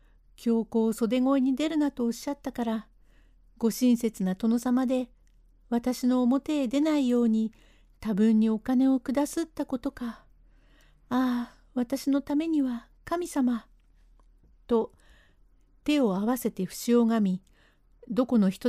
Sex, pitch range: female, 215-265 Hz